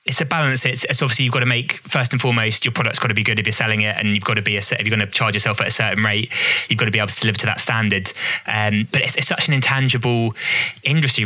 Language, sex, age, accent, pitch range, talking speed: English, male, 20-39, British, 105-125 Hz, 310 wpm